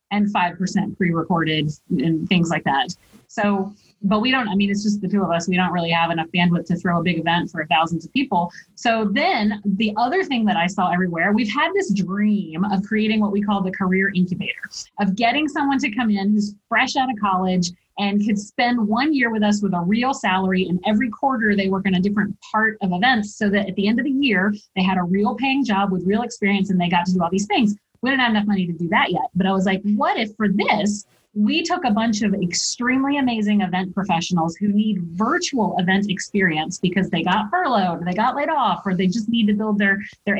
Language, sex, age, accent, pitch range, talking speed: English, female, 30-49, American, 185-225 Hz, 240 wpm